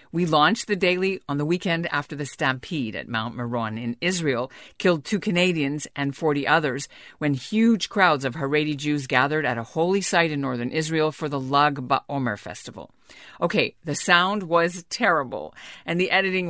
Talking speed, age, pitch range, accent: 175 wpm, 50-69, 130-180 Hz, American